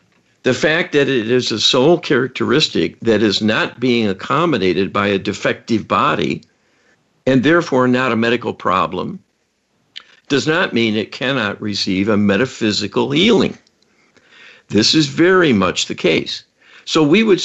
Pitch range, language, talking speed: 110-140 Hz, English, 140 wpm